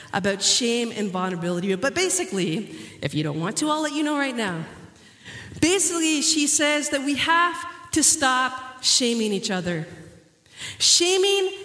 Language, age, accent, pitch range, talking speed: English, 40-59, American, 195-285 Hz, 150 wpm